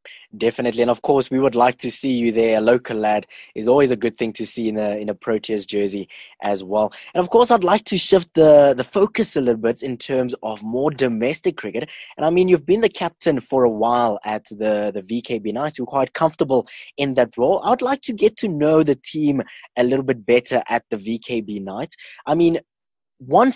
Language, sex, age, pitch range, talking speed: English, male, 20-39, 115-165 Hz, 220 wpm